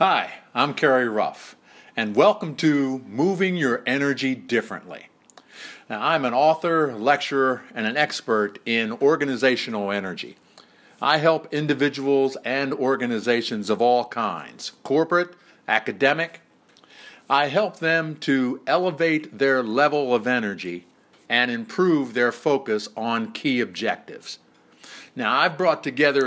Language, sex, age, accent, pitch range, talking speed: English, male, 50-69, American, 120-160 Hz, 120 wpm